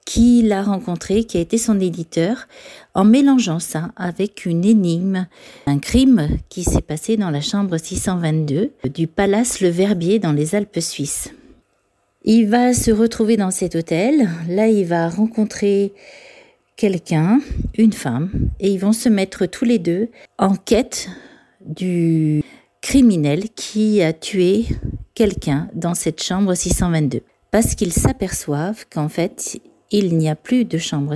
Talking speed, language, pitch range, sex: 145 wpm, French, 165-220 Hz, female